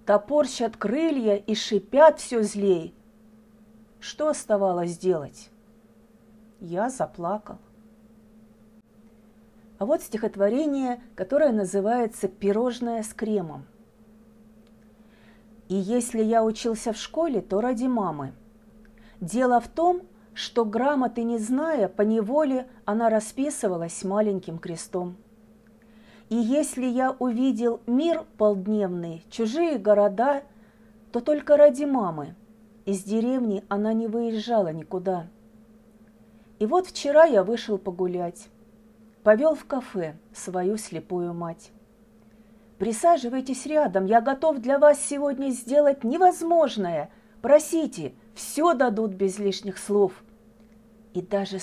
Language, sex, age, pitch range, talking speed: Russian, female, 40-59, 205-240 Hz, 100 wpm